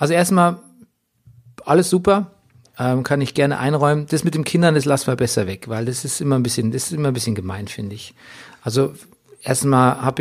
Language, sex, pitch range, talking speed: German, male, 110-135 Hz, 205 wpm